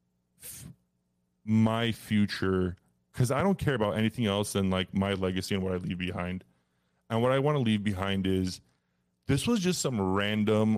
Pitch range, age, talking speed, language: 95-120 Hz, 20-39, 175 wpm, English